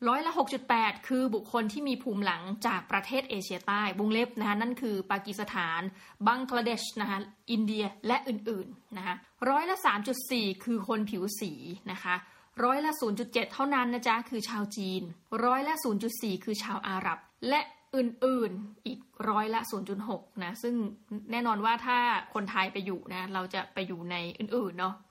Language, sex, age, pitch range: Thai, female, 20-39, 195-245 Hz